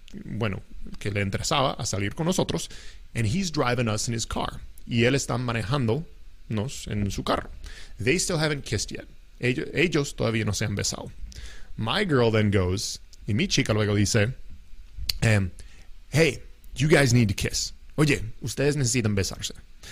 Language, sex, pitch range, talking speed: English, male, 100-130 Hz, 165 wpm